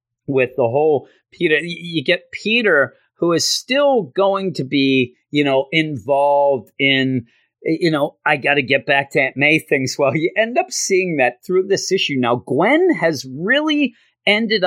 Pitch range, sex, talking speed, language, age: 125-175 Hz, male, 170 wpm, English, 30-49